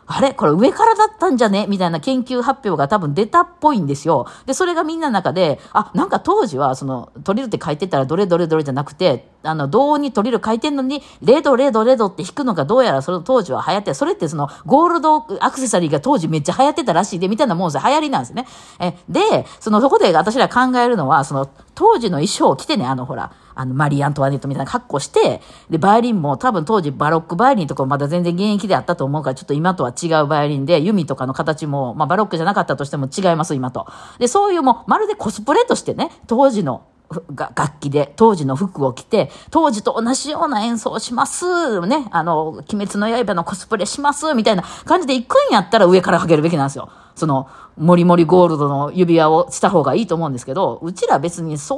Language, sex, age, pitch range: Japanese, female, 40-59, 155-250 Hz